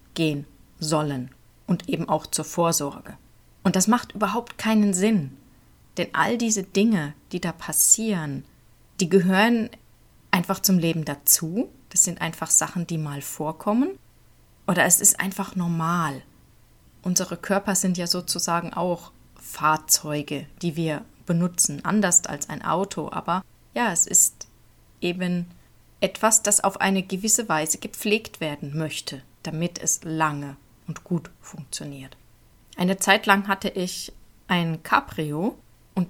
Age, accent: 30-49, German